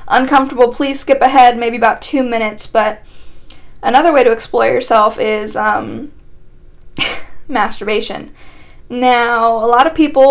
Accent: American